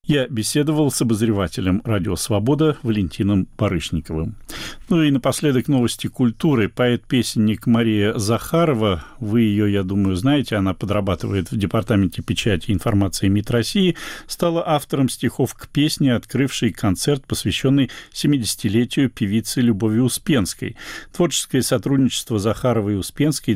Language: Russian